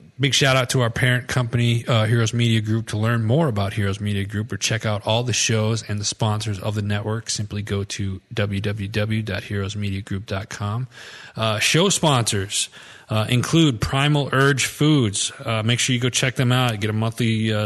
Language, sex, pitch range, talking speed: English, male, 110-125 Hz, 180 wpm